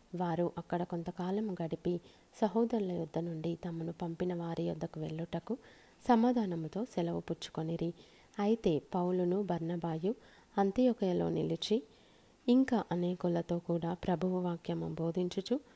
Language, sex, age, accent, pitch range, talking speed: Telugu, female, 20-39, native, 170-205 Hz, 100 wpm